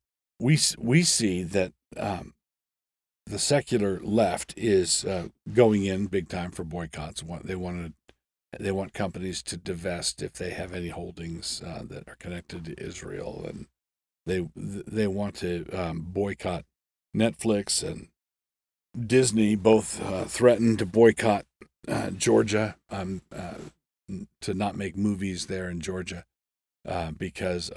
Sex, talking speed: male, 135 wpm